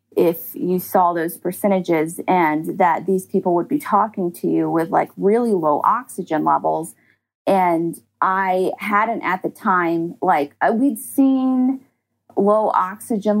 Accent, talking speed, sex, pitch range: American, 140 wpm, female, 160-205 Hz